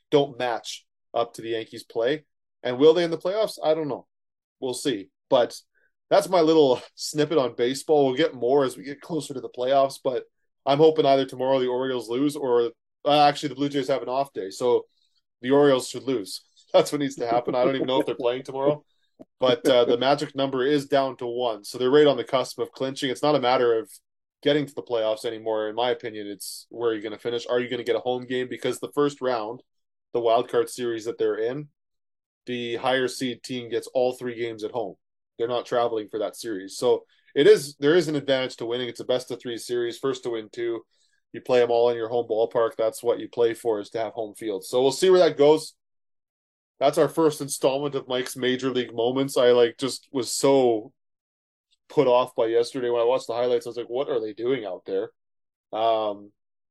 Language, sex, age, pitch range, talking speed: English, male, 20-39, 120-150 Hz, 230 wpm